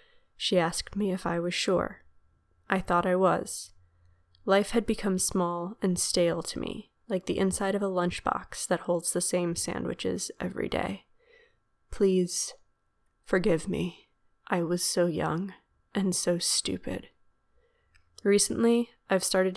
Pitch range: 175-195 Hz